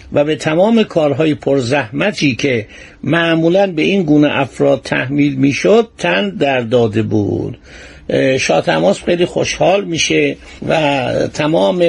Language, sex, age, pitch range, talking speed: Persian, male, 60-79, 135-170 Hz, 120 wpm